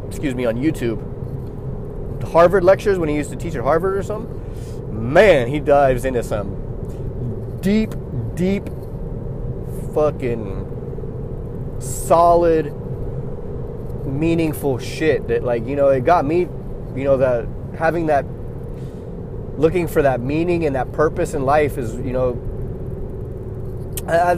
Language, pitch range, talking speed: English, 125-155 Hz, 125 wpm